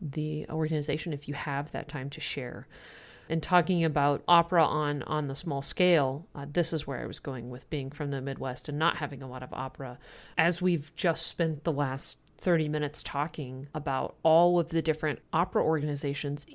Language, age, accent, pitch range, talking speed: English, 30-49, American, 145-165 Hz, 190 wpm